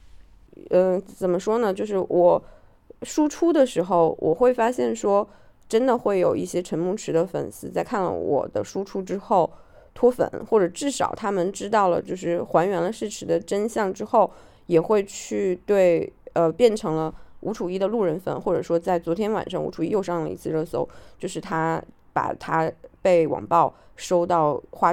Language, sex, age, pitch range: Chinese, female, 20-39, 165-205 Hz